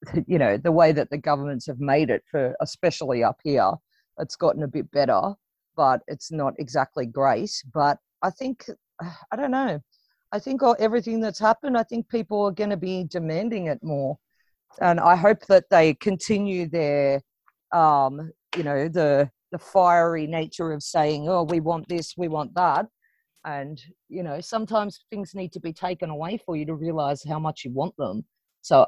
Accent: Australian